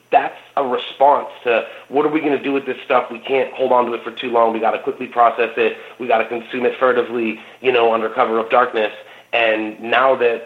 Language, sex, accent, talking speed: English, male, American, 245 wpm